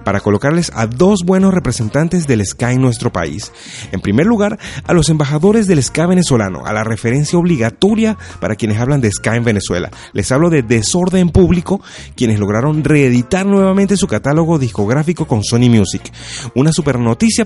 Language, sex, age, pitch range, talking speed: Spanish, male, 30-49, 115-180 Hz, 170 wpm